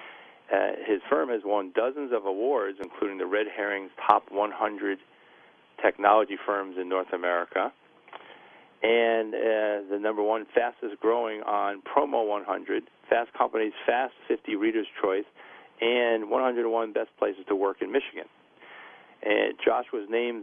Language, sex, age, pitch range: English, male, 50-69, 100-120 Hz